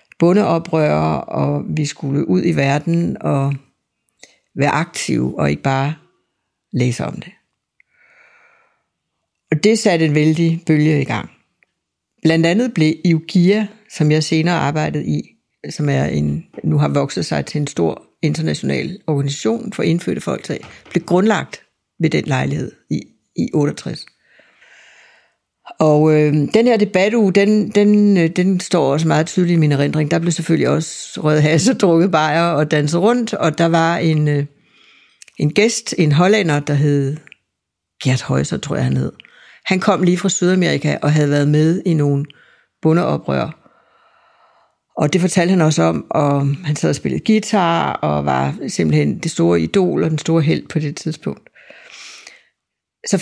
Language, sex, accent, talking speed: Danish, female, native, 155 wpm